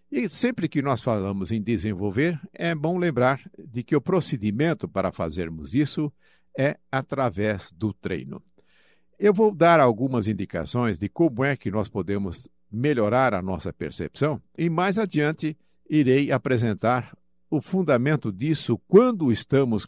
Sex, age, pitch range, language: male, 60-79, 105-150 Hz, Portuguese